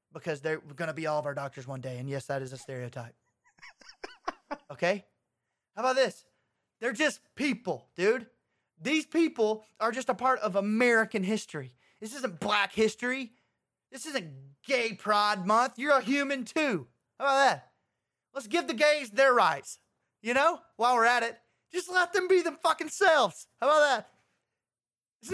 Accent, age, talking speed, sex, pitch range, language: American, 20-39, 175 wpm, male, 170-270 Hz, English